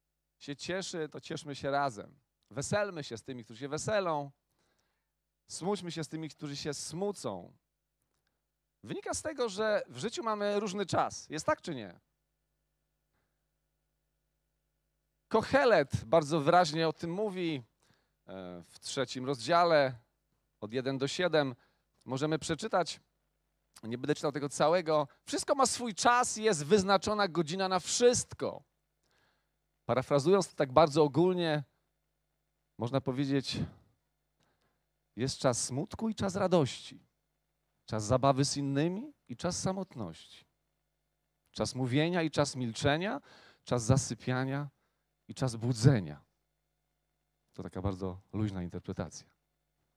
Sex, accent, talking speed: male, native, 115 wpm